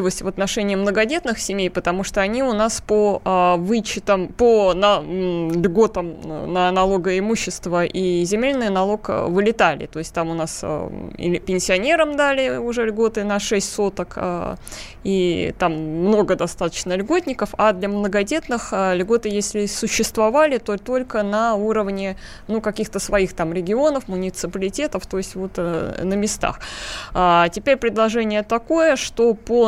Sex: female